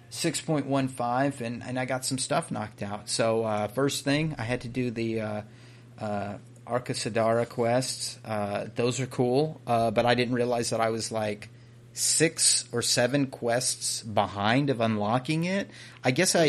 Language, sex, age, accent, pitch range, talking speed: English, male, 30-49, American, 110-125 Hz, 165 wpm